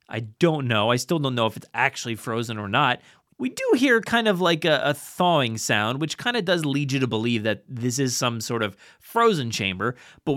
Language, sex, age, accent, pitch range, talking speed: English, male, 30-49, American, 110-145 Hz, 230 wpm